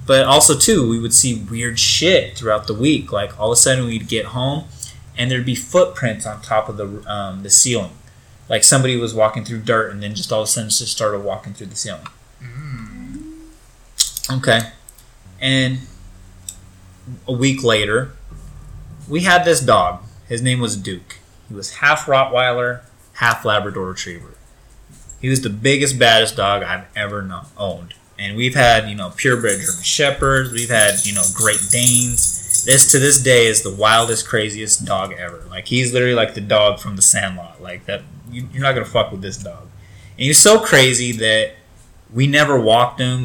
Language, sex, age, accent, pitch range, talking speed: English, male, 20-39, American, 100-130 Hz, 180 wpm